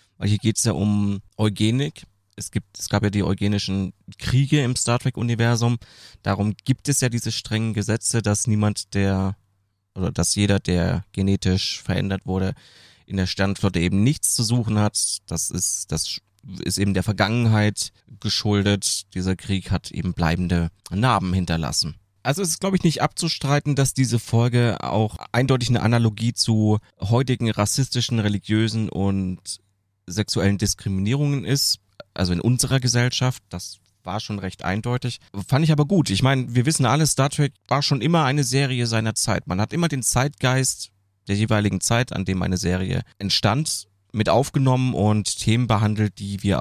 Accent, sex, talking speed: German, male, 165 wpm